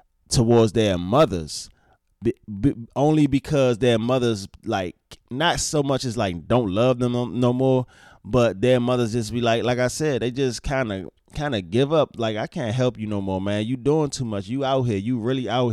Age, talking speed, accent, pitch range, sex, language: 20-39, 200 wpm, American, 100-130 Hz, male, English